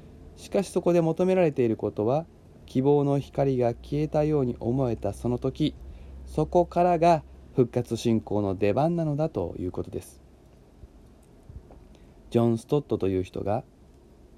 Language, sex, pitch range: Japanese, male, 105-140 Hz